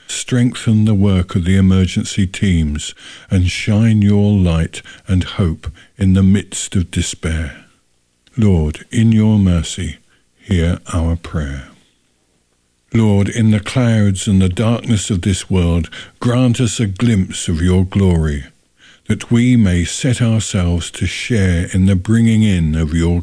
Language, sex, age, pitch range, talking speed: English, male, 60-79, 85-110 Hz, 140 wpm